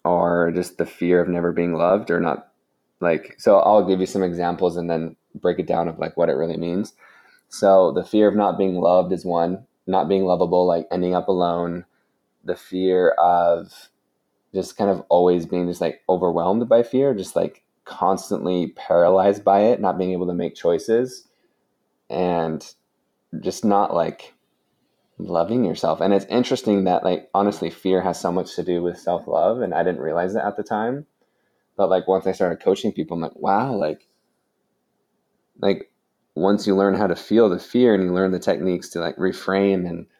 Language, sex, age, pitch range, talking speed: English, male, 20-39, 85-100 Hz, 190 wpm